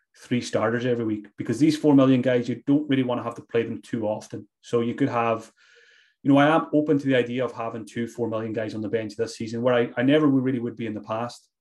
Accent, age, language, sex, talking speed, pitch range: British, 30-49, English, male, 275 wpm, 115-140 Hz